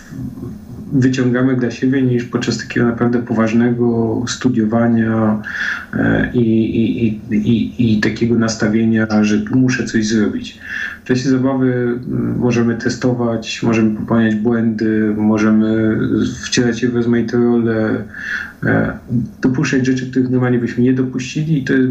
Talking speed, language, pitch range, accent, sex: 110 wpm, Polish, 110-125 Hz, native, male